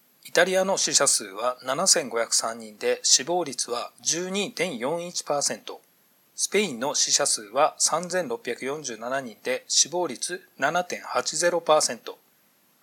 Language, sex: Japanese, male